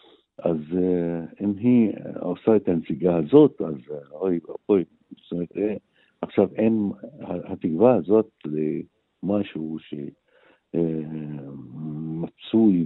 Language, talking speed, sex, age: Hebrew, 85 wpm, male, 60-79